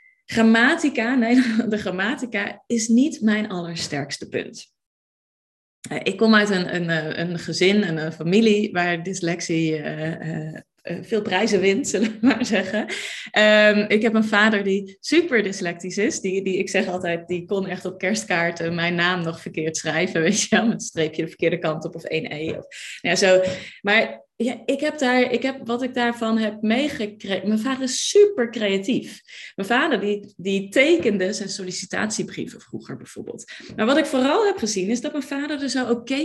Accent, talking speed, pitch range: Dutch, 175 wpm, 185-240 Hz